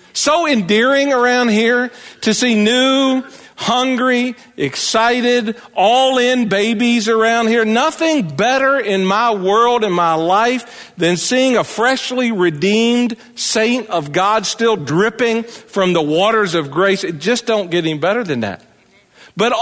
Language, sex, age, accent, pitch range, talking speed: English, male, 50-69, American, 195-250 Hz, 140 wpm